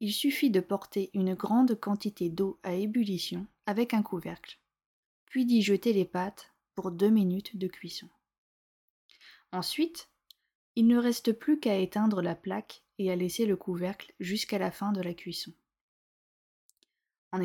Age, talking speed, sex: 20-39, 150 wpm, female